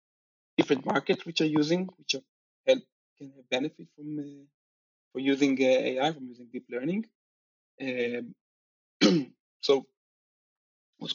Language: English